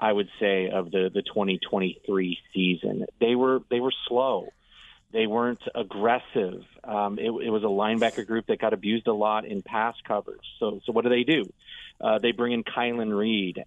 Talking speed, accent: 190 wpm, American